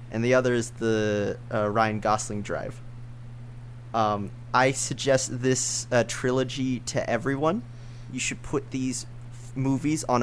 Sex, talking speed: male, 135 wpm